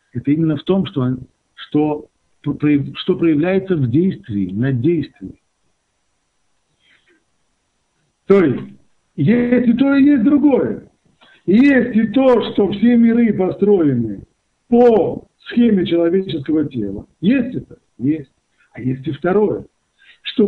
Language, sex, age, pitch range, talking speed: Russian, male, 60-79, 135-195 Hz, 110 wpm